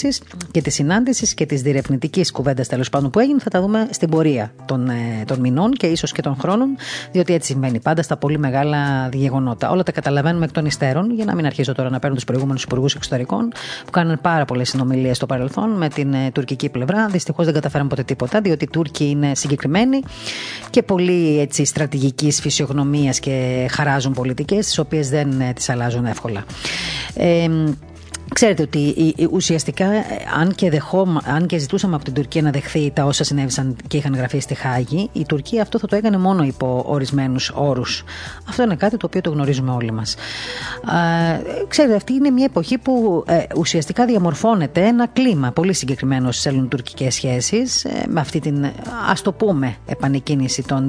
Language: Greek